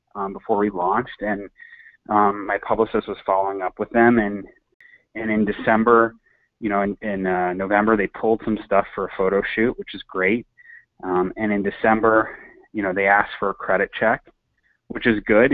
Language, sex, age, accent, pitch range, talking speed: English, male, 30-49, American, 100-115 Hz, 190 wpm